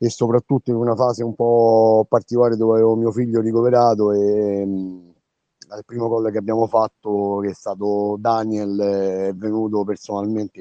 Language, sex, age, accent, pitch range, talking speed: Italian, male, 30-49, native, 110-130 Hz, 155 wpm